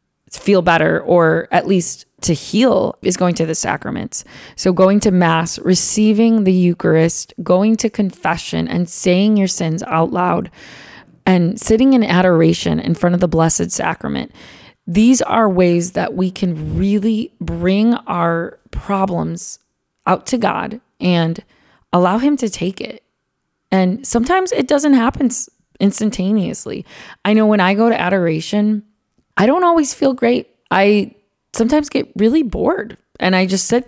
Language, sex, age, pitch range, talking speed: English, female, 20-39, 180-230 Hz, 150 wpm